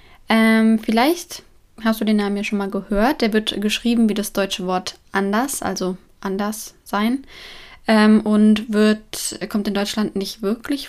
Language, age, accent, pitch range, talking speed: German, 20-39, German, 190-220 Hz, 150 wpm